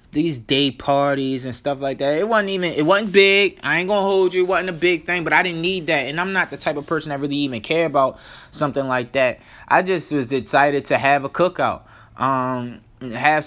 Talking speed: 235 wpm